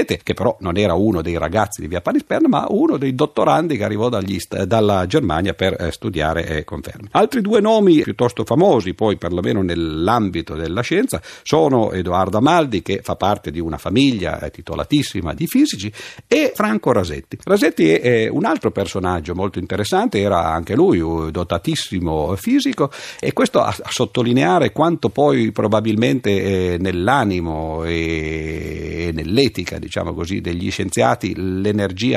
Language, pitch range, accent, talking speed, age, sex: Italian, 85-115 Hz, native, 150 wpm, 50-69, male